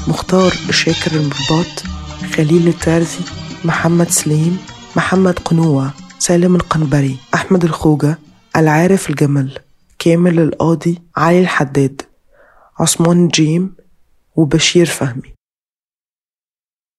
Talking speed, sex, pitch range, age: 80 wpm, female, 155-175 Hz, 20-39